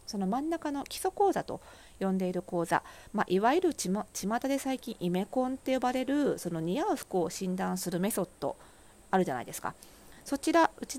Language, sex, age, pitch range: Japanese, female, 40-59, 170-255 Hz